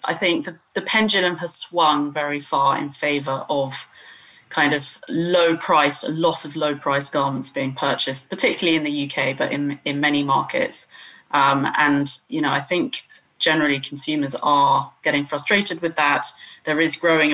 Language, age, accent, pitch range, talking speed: English, 30-49, British, 140-160 Hz, 165 wpm